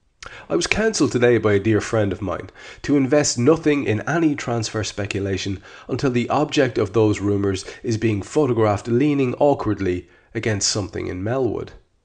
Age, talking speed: 30-49, 160 wpm